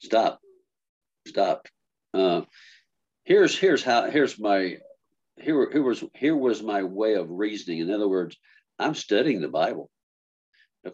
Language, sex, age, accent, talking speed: English, male, 60-79, American, 135 wpm